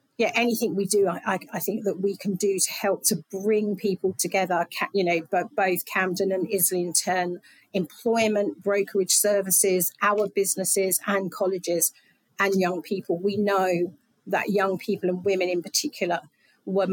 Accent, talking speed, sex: British, 150 wpm, female